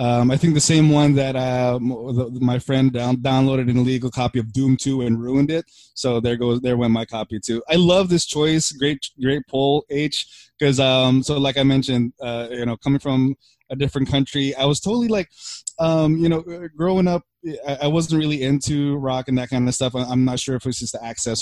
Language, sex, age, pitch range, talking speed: English, male, 20-39, 125-145 Hz, 220 wpm